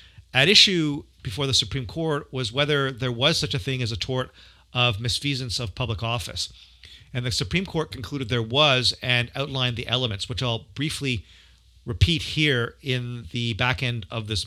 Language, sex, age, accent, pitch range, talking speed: English, male, 40-59, American, 115-150 Hz, 180 wpm